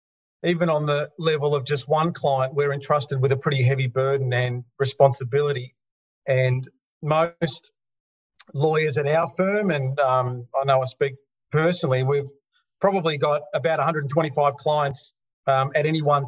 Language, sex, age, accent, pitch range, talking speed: English, male, 40-59, Australian, 135-165 Hz, 145 wpm